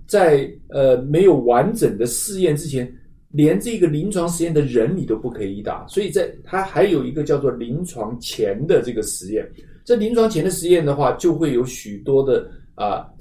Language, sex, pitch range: Chinese, male, 120-165 Hz